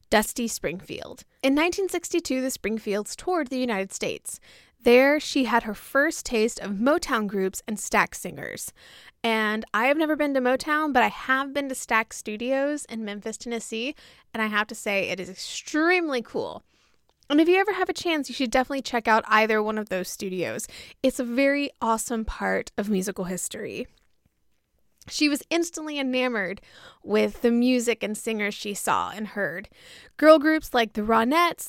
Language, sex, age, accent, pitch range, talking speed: English, female, 20-39, American, 215-285 Hz, 170 wpm